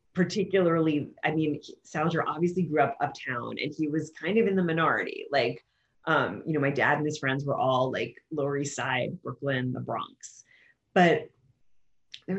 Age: 30-49